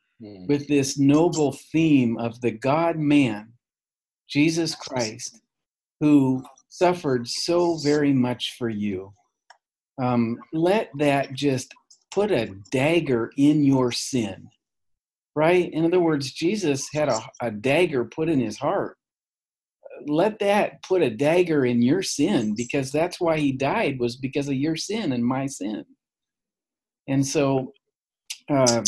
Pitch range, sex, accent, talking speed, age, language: 125-165 Hz, male, American, 130 wpm, 50-69, English